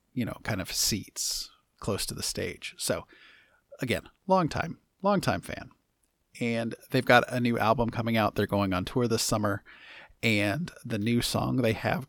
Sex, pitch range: male, 105-125 Hz